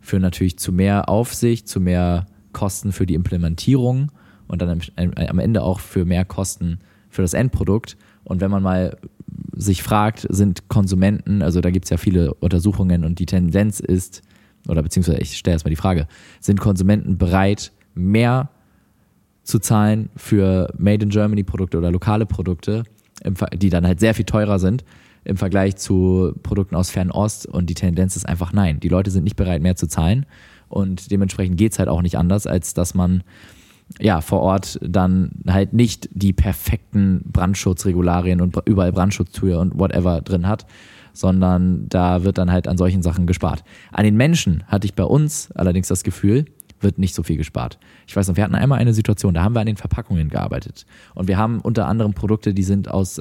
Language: German